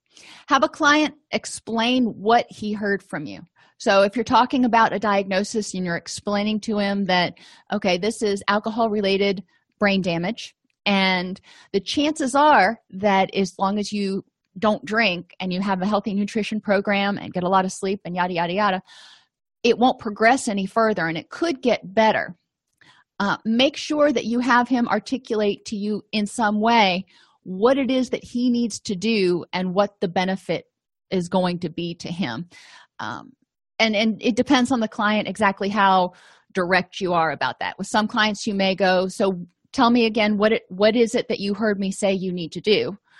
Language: English